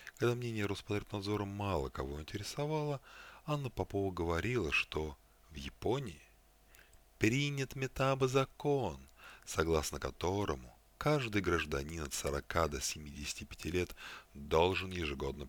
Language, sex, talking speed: Russian, male, 95 wpm